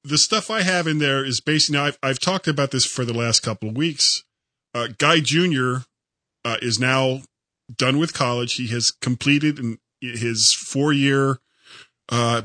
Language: English